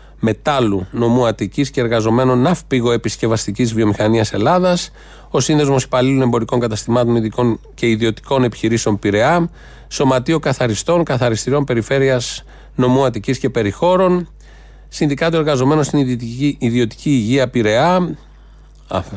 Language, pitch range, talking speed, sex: Greek, 120-150 Hz, 105 wpm, male